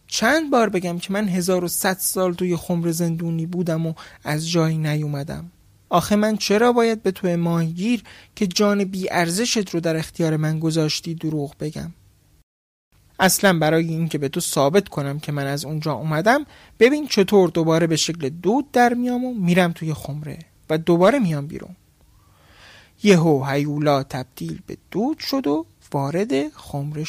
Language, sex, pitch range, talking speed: Persian, male, 145-190 Hz, 160 wpm